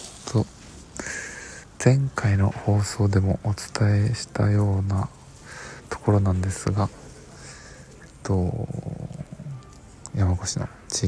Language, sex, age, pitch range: Japanese, male, 20-39, 90-110 Hz